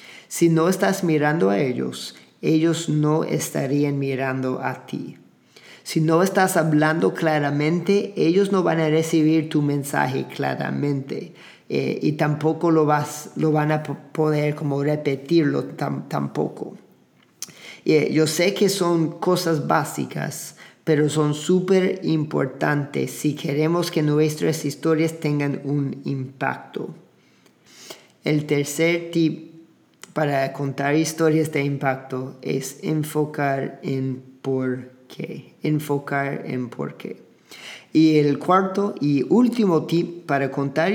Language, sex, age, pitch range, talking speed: Spanish, male, 40-59, 140-160 Hz, 120 wpm